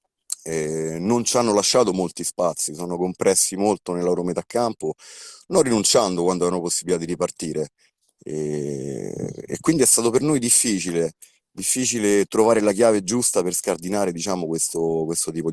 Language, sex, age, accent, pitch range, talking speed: Italian, male, 30-49, native, 80-100 Hz, 150 wpm